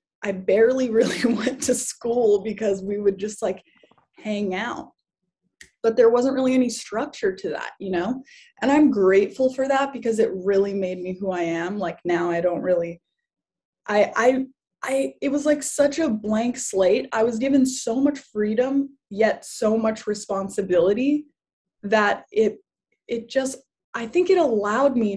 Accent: American